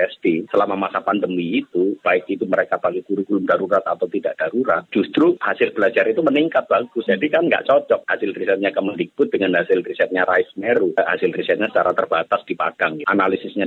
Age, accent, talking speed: 30-49, native, 160 wpm